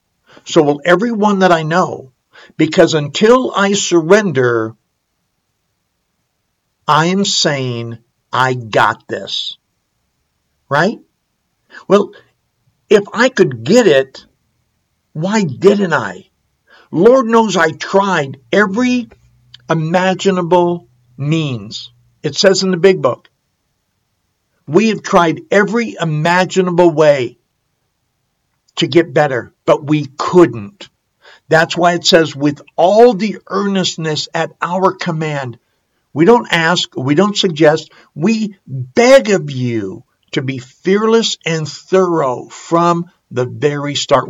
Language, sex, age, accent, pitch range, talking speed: English, male, 60-79, American, 130-185 Hz, 110 wpm